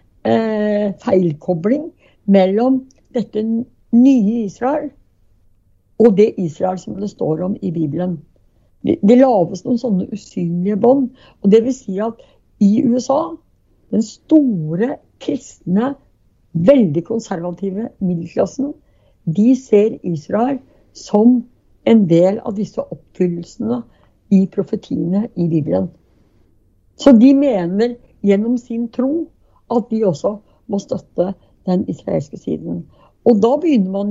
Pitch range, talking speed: 175-245 Hz, 115 wpm